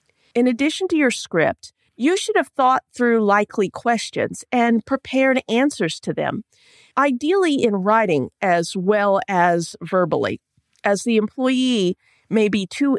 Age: 40-59